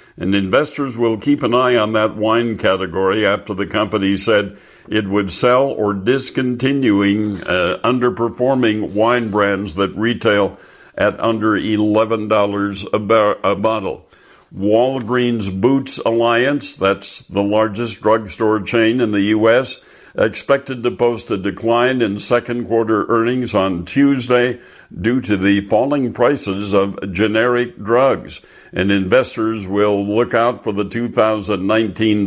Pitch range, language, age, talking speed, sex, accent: 100-120 Hz, English, 60-79, 130 wpm, male, American